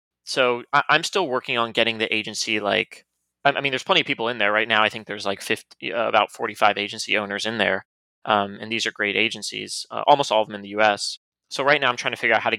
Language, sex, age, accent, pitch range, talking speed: English, male, 20-39, American, 105-120 Hz, 260 wpm